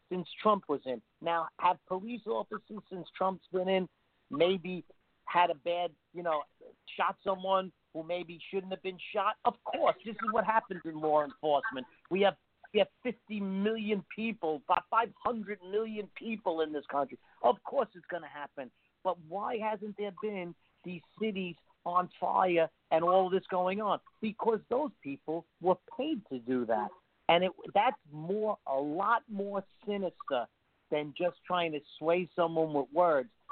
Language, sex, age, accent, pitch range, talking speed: English, male, 50-69, American, 165-220 Hz, 170 wpm